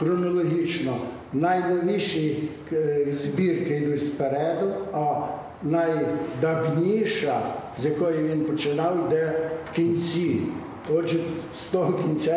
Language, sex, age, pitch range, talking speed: Ukrainian, male, 60-79, 150-180 Hz, 85 wpm